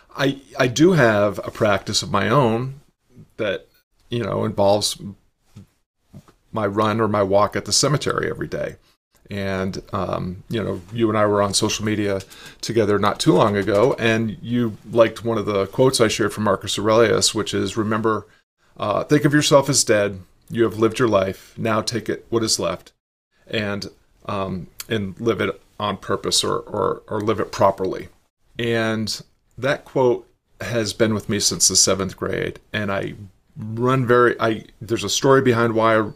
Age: 40-59